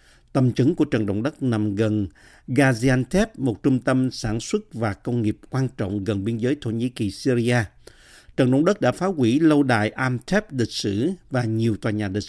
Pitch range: 110-150 Hz